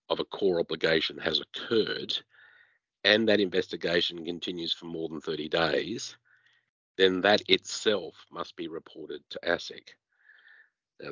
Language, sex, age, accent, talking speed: English, male, 50-69, Australian, 130 wpm